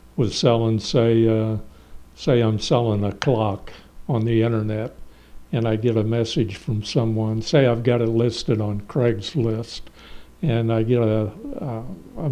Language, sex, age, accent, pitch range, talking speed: English, male, 60-79, American, 115-140 Hz, 155 wpm